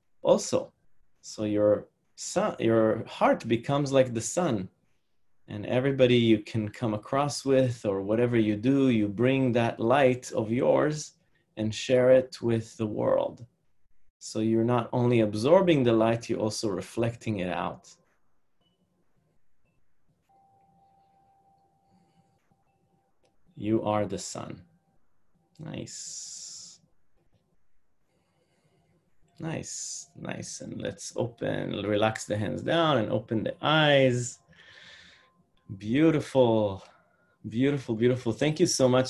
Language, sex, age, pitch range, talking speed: English, male, 30-49, 110-140 Hz, 105 wpm